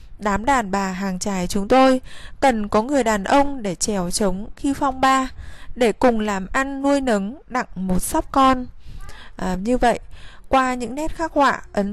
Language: Vietnamese